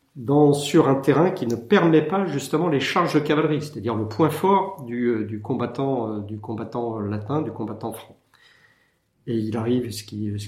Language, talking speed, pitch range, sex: French, 185 wpm, 110-130 Hz, male